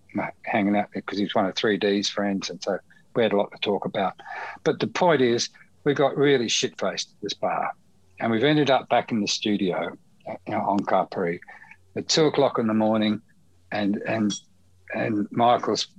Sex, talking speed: male, 190 wpm